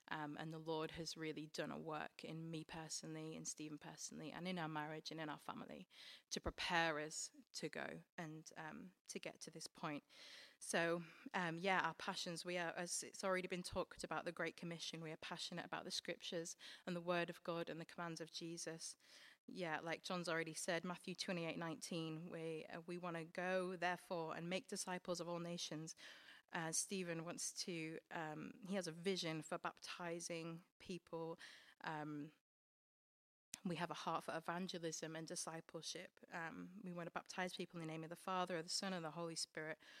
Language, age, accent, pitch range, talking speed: English, 30-49, British, 160-180 Hz, 190 wpm